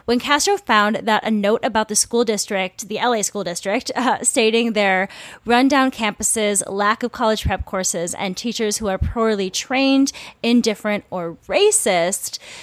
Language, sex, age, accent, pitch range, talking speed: English, female, 20-39, American, 195-240 Hz, 155 wpm